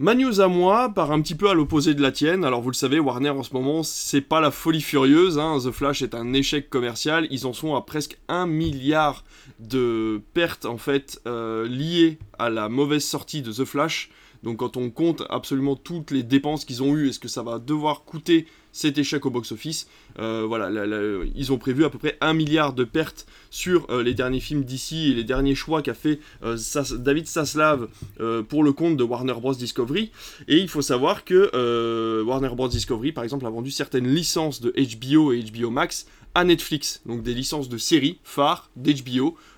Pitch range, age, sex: 125-155 Hz, 20-39, male